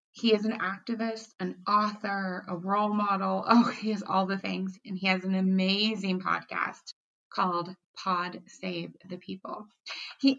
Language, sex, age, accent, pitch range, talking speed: English, female, 30-49, American, 205-295 Hz, 155 wpm